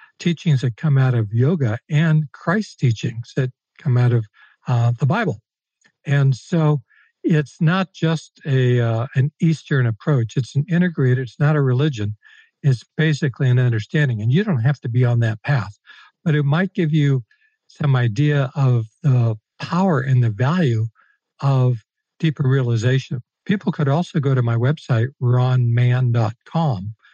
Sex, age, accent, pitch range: male, 60-79, American, 120-150 Hz